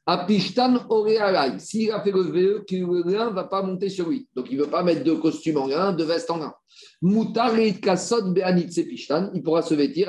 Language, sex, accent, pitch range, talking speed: French, male, French, 170-230 Hz, 215 wpm